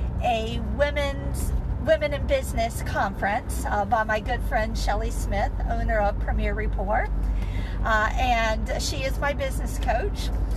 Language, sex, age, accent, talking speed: English, female, 50-69, American, 135 wpm